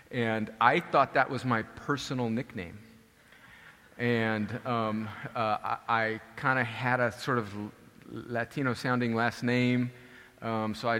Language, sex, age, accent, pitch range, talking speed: English, male, 40-59, American, 110-145 Hz, 130 wpm